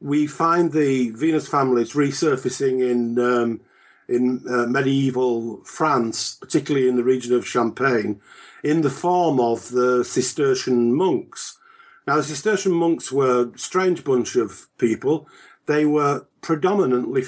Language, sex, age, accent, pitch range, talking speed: English, male, 50-69, British, 125-165 Hz, 130 wpm